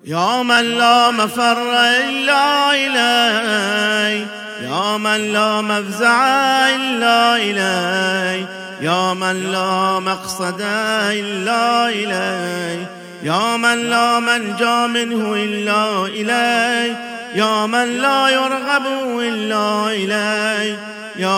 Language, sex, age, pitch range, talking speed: Arabic, male, 40-59, 190-235 Hz, 90 wpm